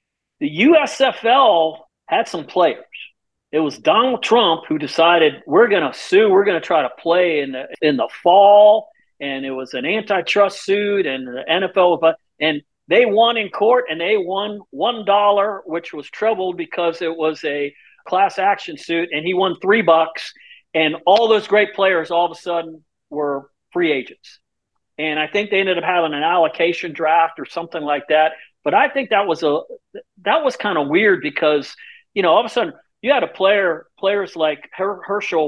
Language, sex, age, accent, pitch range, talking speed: English, male, 50-69, American, 150-200 Hz, 185 wpm